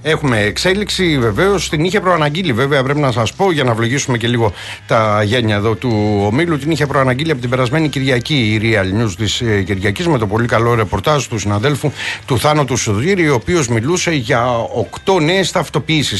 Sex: male